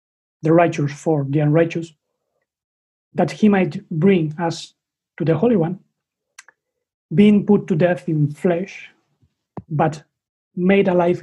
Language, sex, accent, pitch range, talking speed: English, male, Spanish, 150-180 Hz, 120 wpm